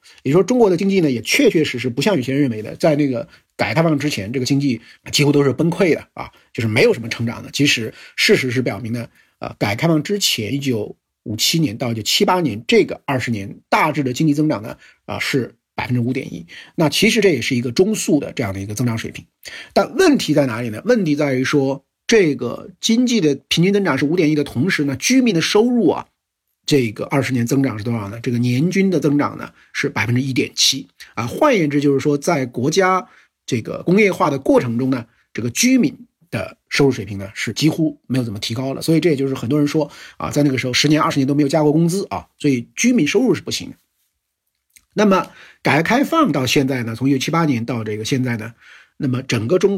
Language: Chinese